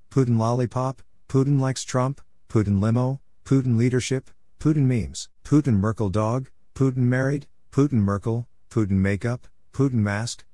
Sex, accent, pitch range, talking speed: male, American, 105-135 Hz, 125 wpm